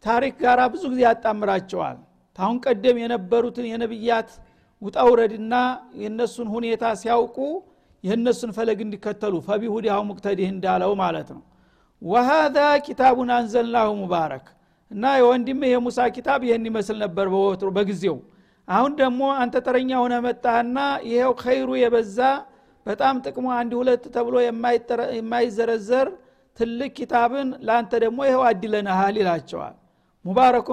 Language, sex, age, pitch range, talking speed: Amharic, male, 50-69, 210-250 Hz, 105 wpm